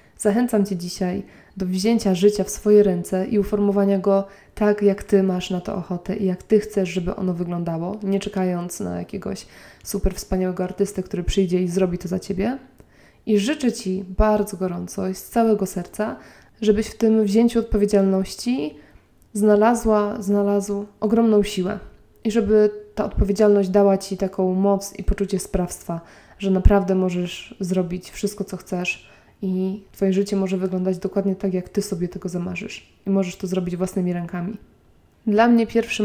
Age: 20-39